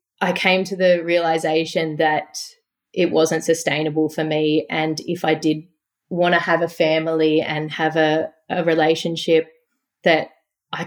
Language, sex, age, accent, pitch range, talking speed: English, female, 30-49, Australian, 155-170 Hz, 150 wpm